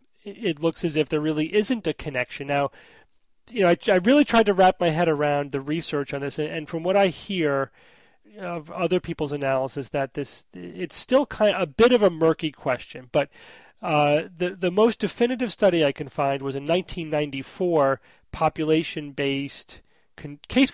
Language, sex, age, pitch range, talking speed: English, male, 30-49, 140-185 Hz, 180 wpm